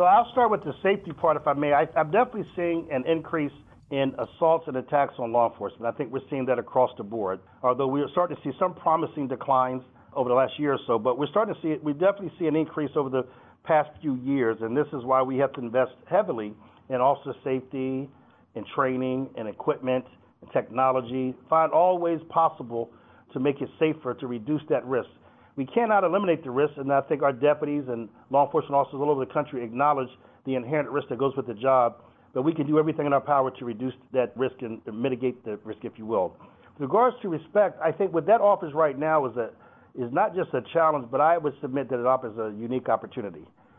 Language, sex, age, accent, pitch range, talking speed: English, male, 50-69, American, 130-155 Hz, 225 wpm